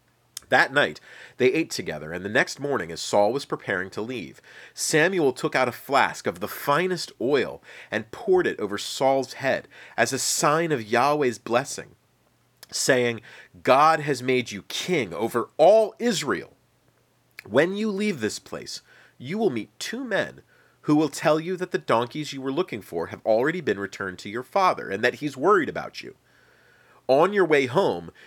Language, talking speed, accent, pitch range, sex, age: English, 175 wpm, American, 120-190 Hz, male, 40-59